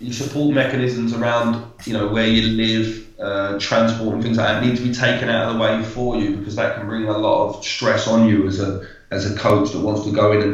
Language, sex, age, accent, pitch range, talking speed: English, male, 20-39, British, 105-120 Hz, 255 wpm